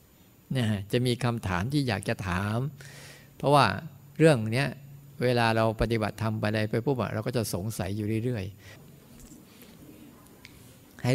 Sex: male